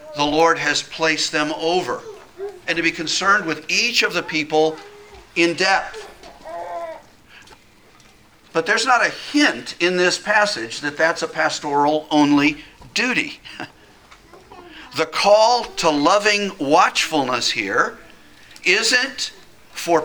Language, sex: English, male